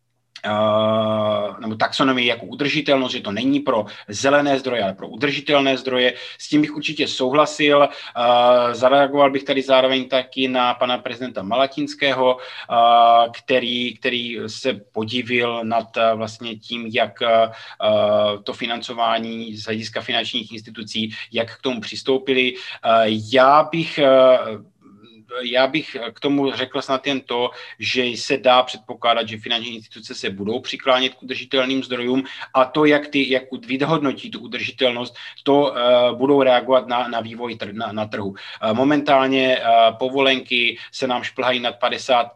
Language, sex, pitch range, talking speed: Slovak, male, 115-135 Hz, 135 wpm